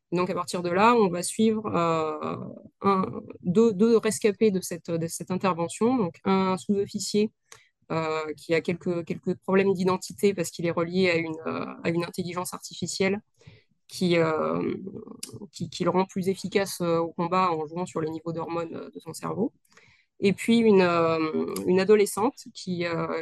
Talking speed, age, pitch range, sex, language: 170 wpm, 20-39, 170-200 Hz, female, French